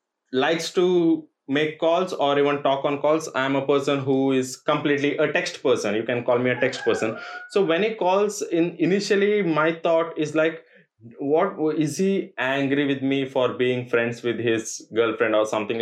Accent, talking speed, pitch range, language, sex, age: Indian, 185 wpm, 135-175 Hz, English, male, 20-39